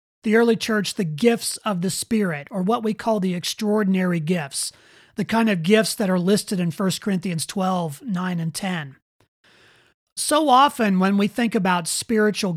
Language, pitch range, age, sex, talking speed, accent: English, 170-200 Hz, 30-49, male, 170 wpm, American